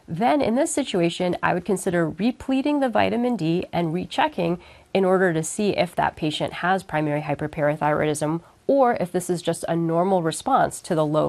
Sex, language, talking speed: female, English, 180 wpm